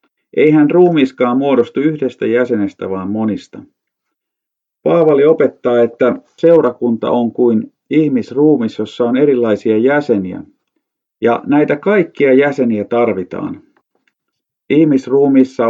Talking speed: 90 wpm